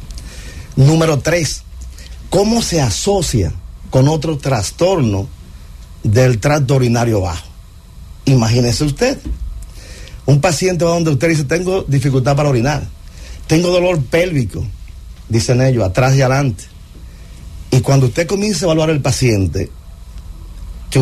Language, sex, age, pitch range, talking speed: English, male, 40-59, 85-145 Hz, 115 wpm